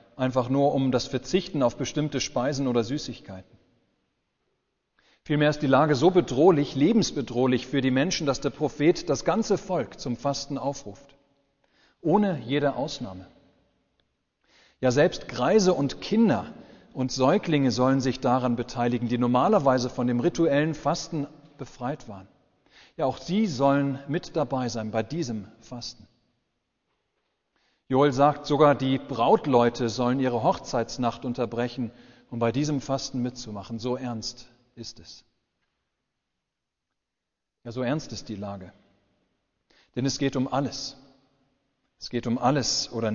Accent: German